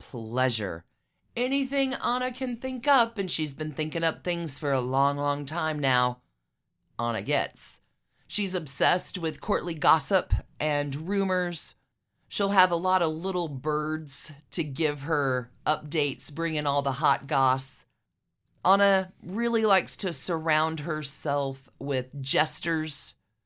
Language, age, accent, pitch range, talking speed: English, 40-59, American, 140-190 Hz, 130 wpm